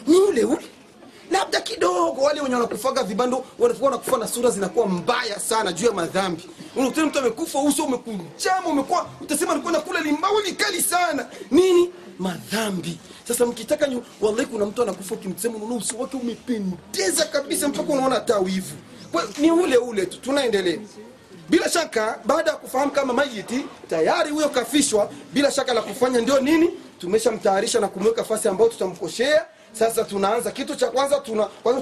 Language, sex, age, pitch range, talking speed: Swahili, male, 40-59, 210-290 Hz, 175 wpm